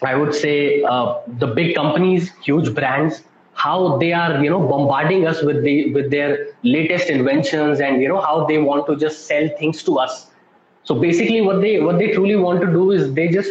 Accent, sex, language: native, male, Hindi